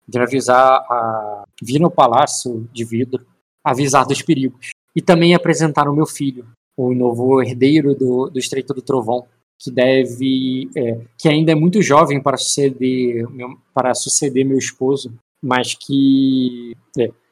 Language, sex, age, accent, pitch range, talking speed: Portuguese, male, 20-39, Brazilian, 125-155 Hz, 145 wpm